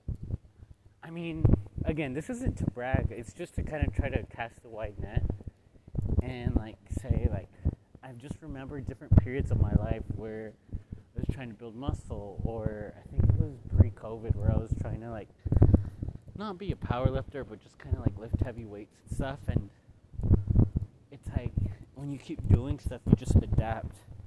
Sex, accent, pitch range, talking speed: male, American, 95-115 Hz, 185 wpm